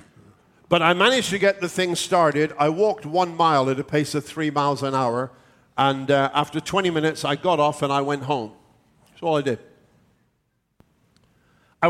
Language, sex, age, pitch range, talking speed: English, male, 50-69, 130-160 Hz, 185 wpm